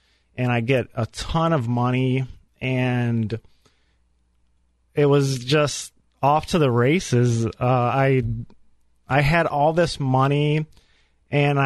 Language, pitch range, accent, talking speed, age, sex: English, 110-135 Hz, American, 120 wpm, 30-49, male